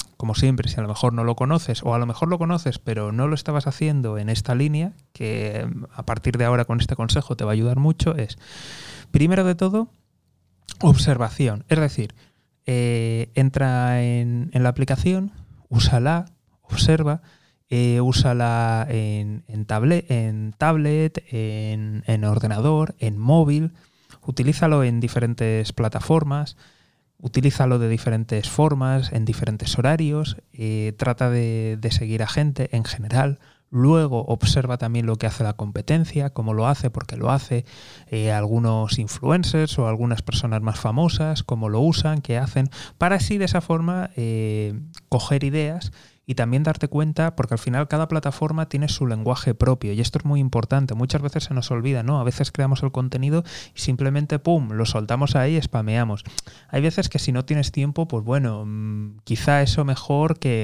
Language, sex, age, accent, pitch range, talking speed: Spanish, male, 20-39, Spanish, 115-150 Hz, 165 wpm